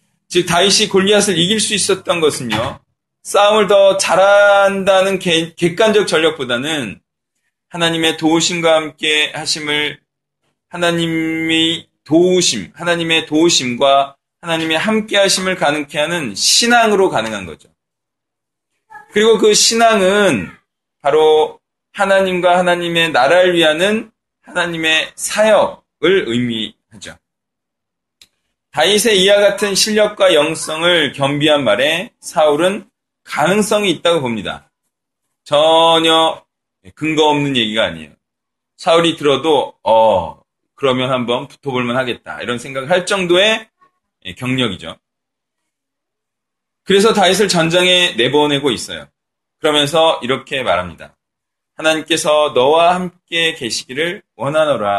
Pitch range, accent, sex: 150-195 Hz, native, male